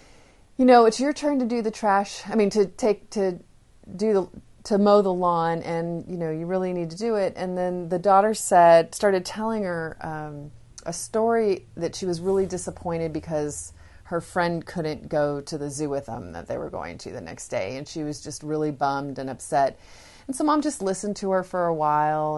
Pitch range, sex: 155-200 Hz, female